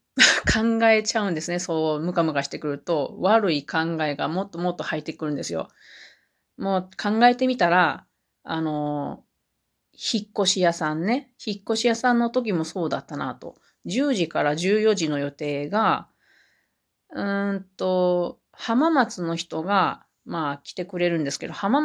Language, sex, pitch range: Japanese, female, 160-225 Hz